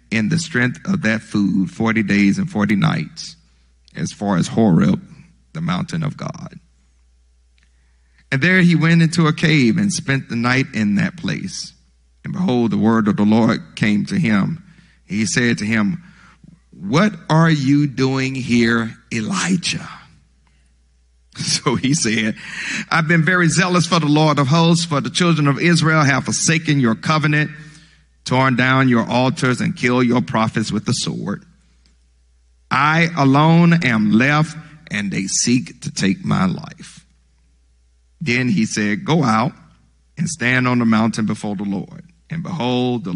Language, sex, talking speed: English, male, 155 wpm